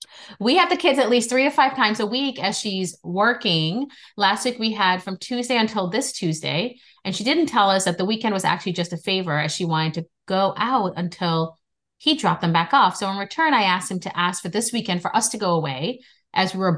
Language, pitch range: English, 175-220 Hz